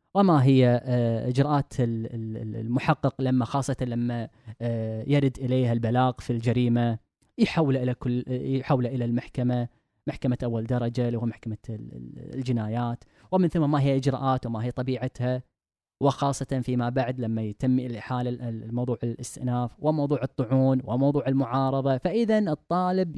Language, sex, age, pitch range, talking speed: Arabic, female, 10-29, 115-145 Hz, 120 wpm